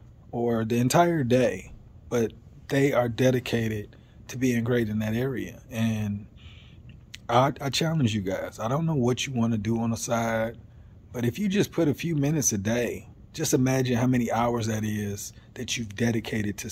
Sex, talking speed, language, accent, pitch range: male, 185 wpm, English, American, 110-130 Hz